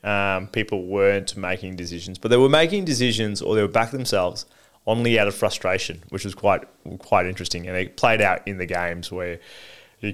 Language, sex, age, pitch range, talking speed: English, male, 20-39, 95-115 Hz, 195 wpm